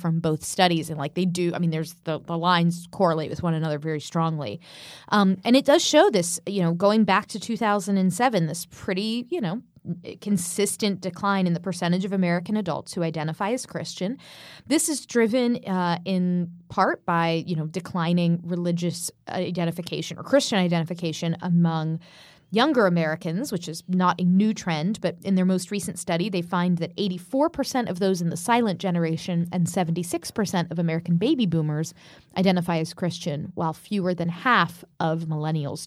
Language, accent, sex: English, American, female